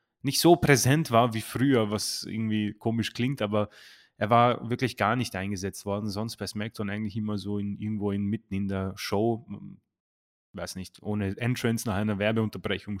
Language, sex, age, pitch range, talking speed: German, male, 30-49, 105-125 Hz, 175 wpm